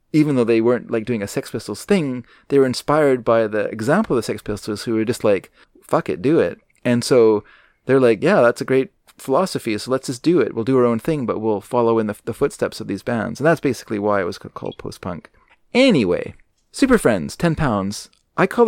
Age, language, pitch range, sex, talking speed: 30-49, English, 105-135 Hz, male, 230 wpm